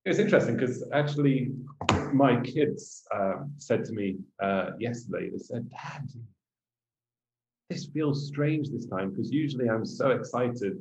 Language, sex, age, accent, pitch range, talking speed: English, male, 30-49, British, 100-125 Hz, 140 wpm